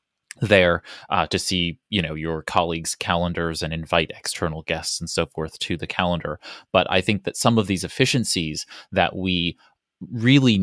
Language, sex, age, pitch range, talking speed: English, male, 30-49, 85-100 Hz, 170 wpm